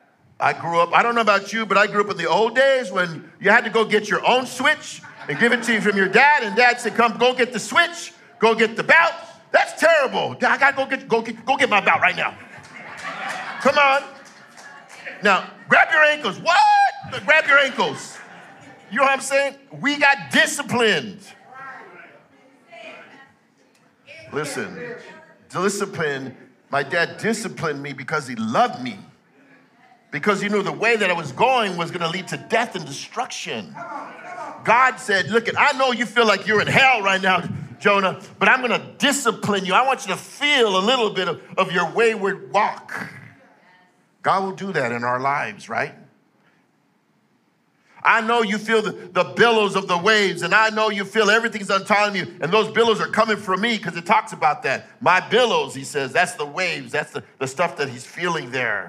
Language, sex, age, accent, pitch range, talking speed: English, male, 50-69, American, 185-255 Hz, 200 wpm